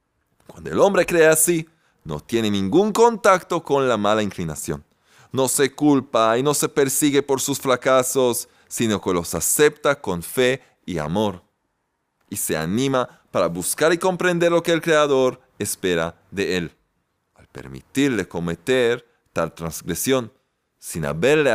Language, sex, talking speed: Spanish, male, 145 wpm